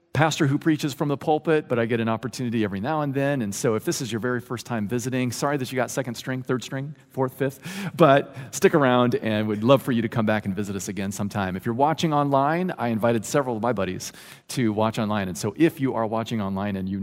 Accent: American